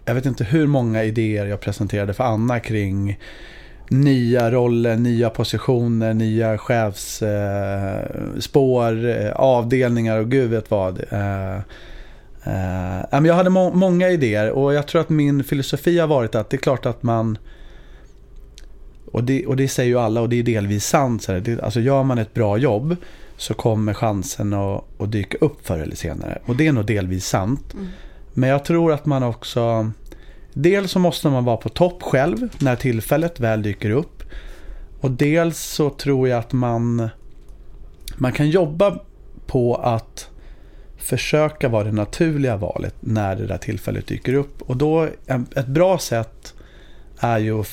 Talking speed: 150 wpm